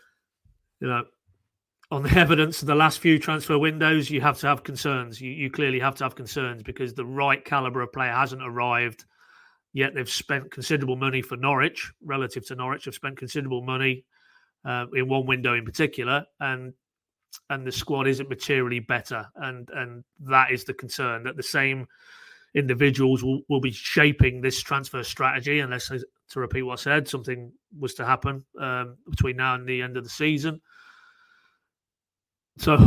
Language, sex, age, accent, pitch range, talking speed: English, male, 30-49, British, 125-145 Hz, 175 wpm